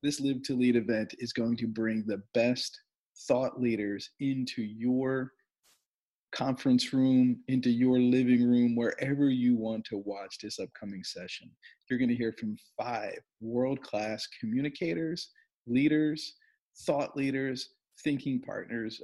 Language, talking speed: English, 130 wpm